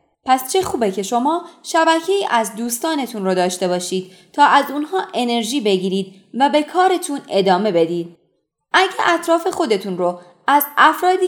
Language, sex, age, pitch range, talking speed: Persian, female, 20-39, 200-320 Hz, 150 wpm